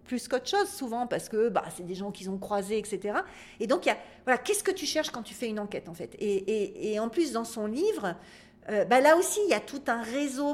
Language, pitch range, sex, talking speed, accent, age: French, 200-255 Hz, female, 280 wpm, French, 40-59